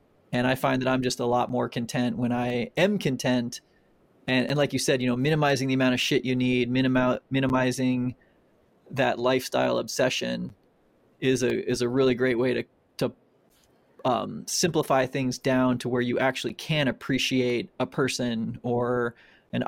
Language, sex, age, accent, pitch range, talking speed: English, male, 20-39, American, 125-140 Hz, 170 wpm